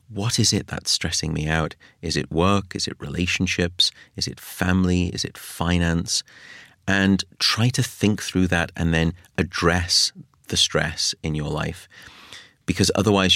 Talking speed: 155 wpm